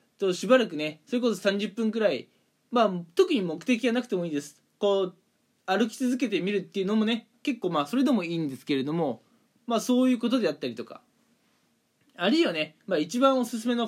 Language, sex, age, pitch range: Japanese, male, 20-39, 170-240 Hz